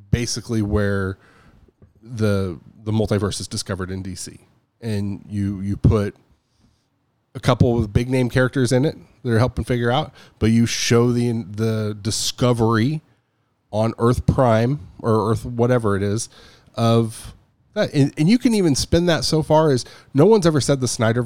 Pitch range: 100-125 Hz